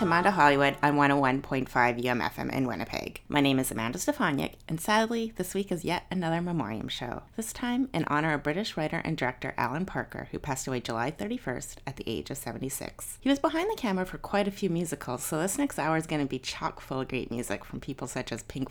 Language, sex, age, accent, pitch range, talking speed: English, female, 30-49, American, 130-190 Hz, 225 wpm